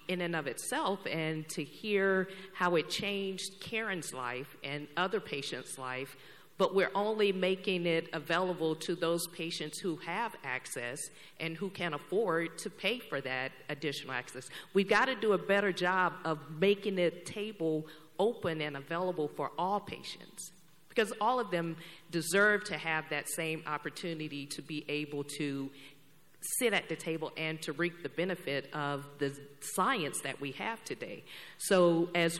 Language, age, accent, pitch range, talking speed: English, 40-59, American, 155-190 Hz, 160 wpm